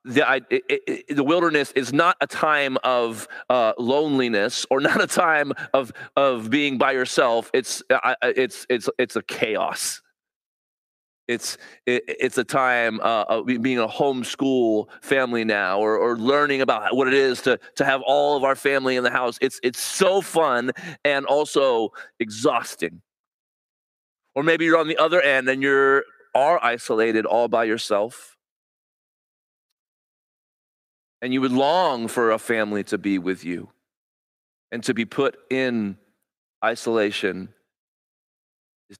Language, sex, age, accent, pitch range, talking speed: English, male, 30-49, American, 110-140 Hz, 150 wpm